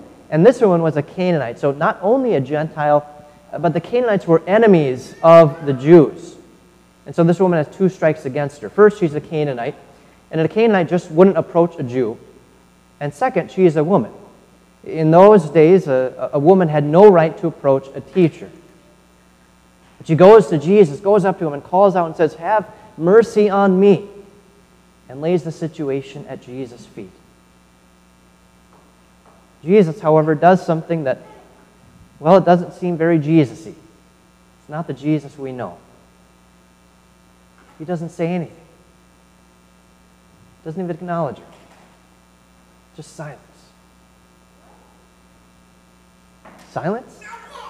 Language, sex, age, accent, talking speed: English, male, 30-49, American, 140 wpm